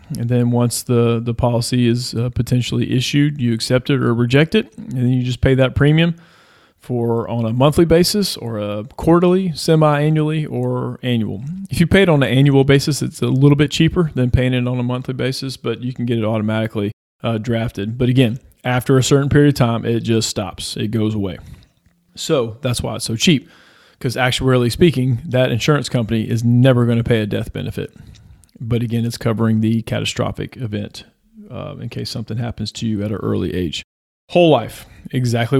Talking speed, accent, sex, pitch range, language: 195 wpm, American, male, 115-135 Hz, English